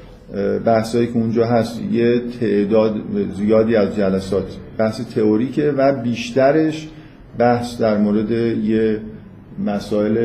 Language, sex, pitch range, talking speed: Persian, male, 100-120 Hz, 105 wpm